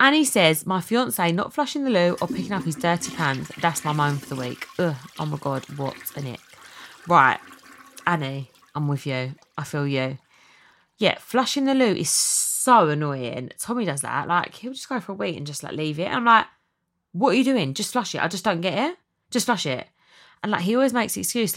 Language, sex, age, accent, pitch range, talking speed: English, female, 20-39, British, 145-200 Hz, 230 wpm